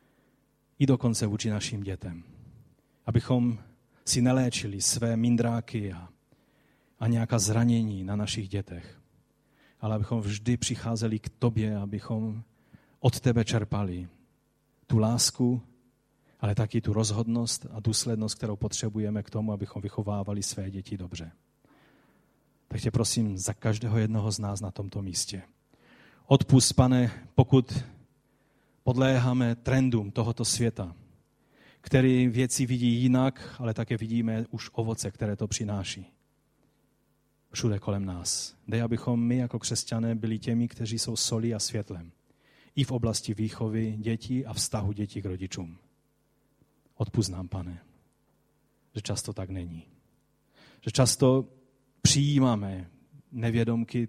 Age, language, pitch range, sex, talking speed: 30-49, Czech, 105-125 Hz, male, 120 wpm